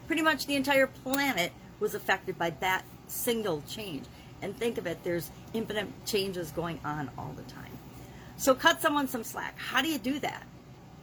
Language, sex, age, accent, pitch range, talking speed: English, female, 50-69, American, 165-220 Hz, 180 wpm